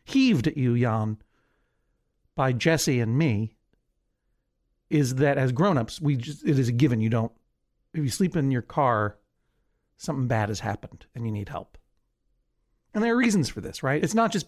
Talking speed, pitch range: 175 wpm, 115-160 Hz